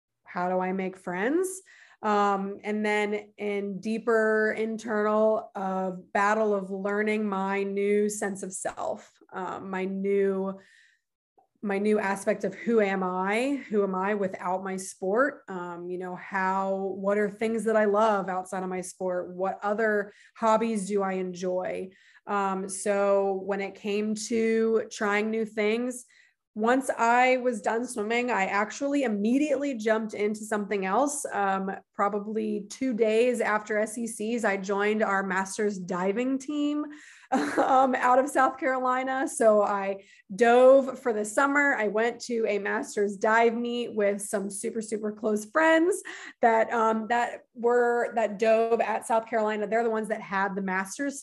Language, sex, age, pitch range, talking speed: English, female, 20-39, 195-235 Hz, 150 wpm